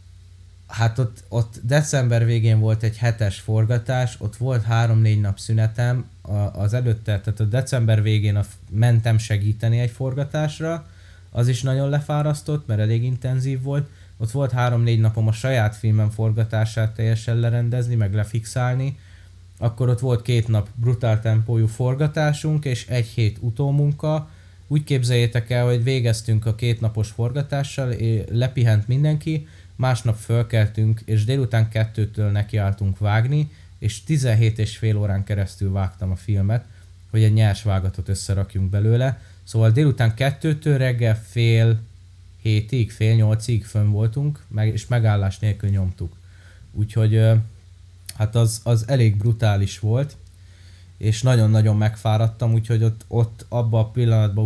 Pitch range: 105-120 Hz